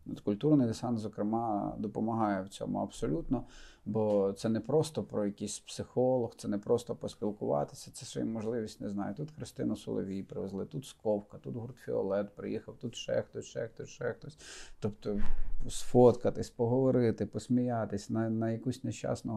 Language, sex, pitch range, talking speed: Ukrainian, male, 105-125 Hz, 160 wpm